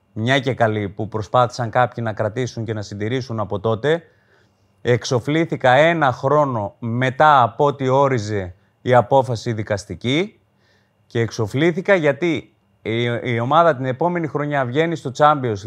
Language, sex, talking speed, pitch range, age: Greek, male, 130 wpm, 115-165 Hz, 30-49